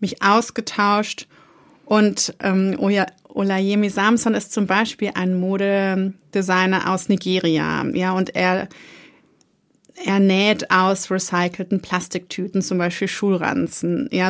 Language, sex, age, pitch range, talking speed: German, female, 30-49, 185-215 Hz, 105 wpm